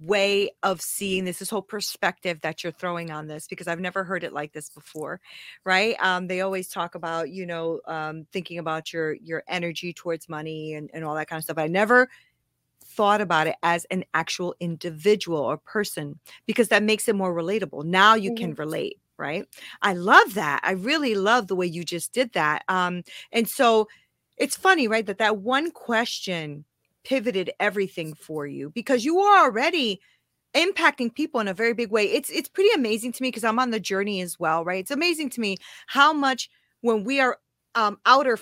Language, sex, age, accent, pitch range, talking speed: English, female, 40-59, American, 175-245 Hz, 200 wpm